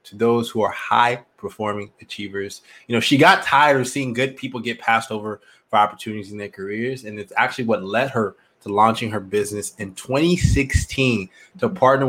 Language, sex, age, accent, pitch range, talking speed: English, male, 20-39, American, 105-125 Hz, 190 wpm